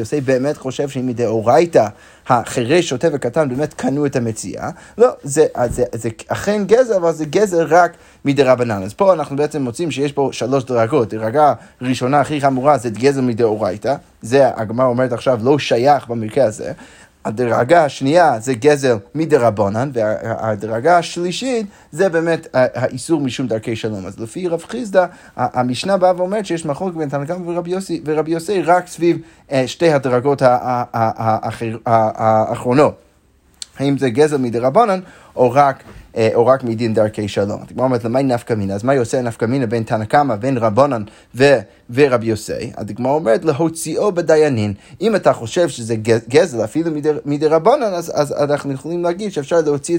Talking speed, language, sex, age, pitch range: 150 wpm, Hebrew, male, 30-49, 120-165 Hz